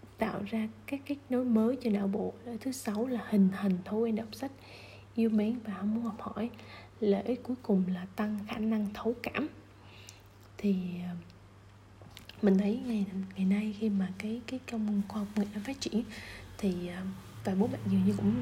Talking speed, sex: 180 wpm, female